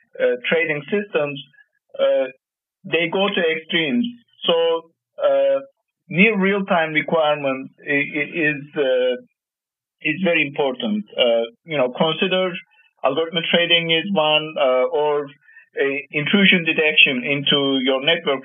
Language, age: English, 50-69